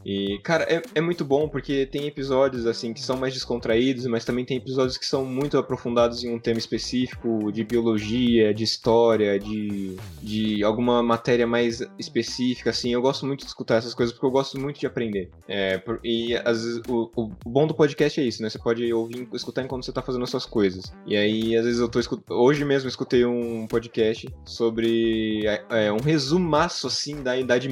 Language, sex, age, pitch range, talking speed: Portuguese, male, 20-39, 110-130 Hz, 200 wpm